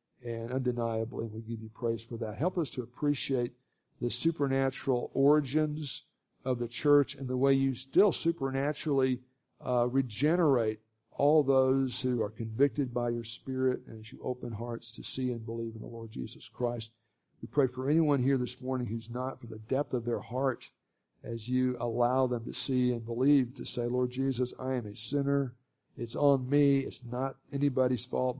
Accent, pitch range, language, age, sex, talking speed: American, 120-135 Hz, English, 50-69, male, 180 wpm